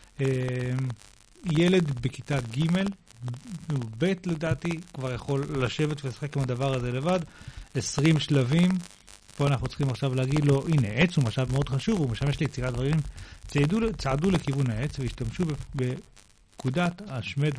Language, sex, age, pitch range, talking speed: Hebrew, male, 40-59, 125-155 Hz, 135 wpm